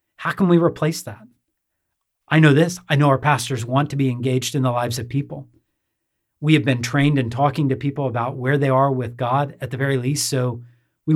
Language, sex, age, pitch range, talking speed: English, male, 40-59, 120-140 Hz, 220 wpm